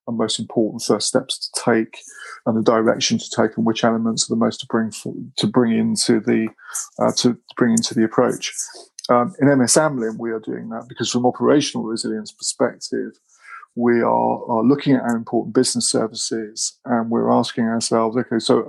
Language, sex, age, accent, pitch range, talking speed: English, male, 30-49, British, 115-130 Hz, 190 wpm